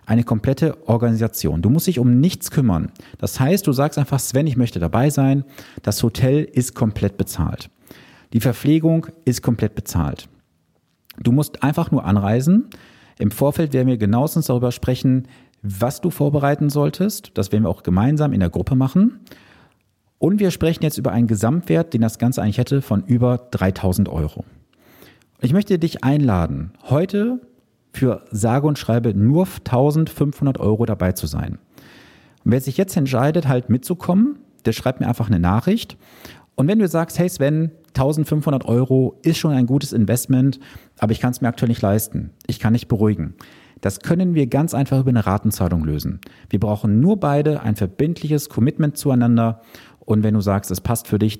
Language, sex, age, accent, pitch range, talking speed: German, male, 40-59, German, 110-145 Hz, 175 wpm